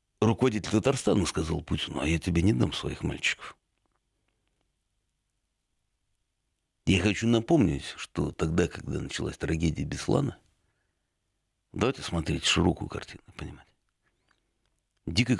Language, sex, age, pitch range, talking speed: Russian, male, 60-79, 85-110 Hz, 100 wpm